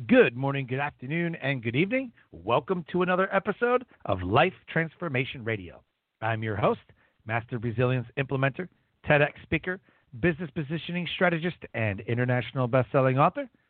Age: 40-59